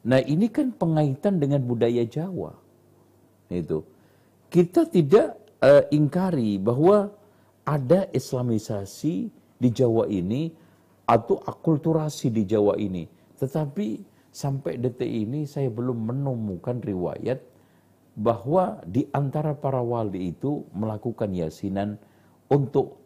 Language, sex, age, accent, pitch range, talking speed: Indonesian, male, 50-69, native, 110-175 Hz, 105 wpm